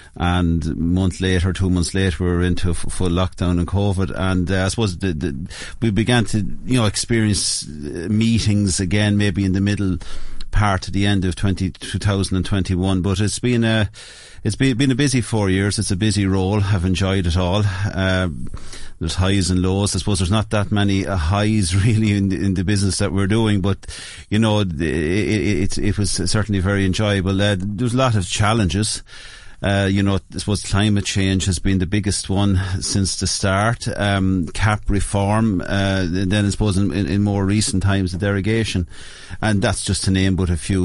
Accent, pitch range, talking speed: Irish, 90-105 Hz, 210 wpm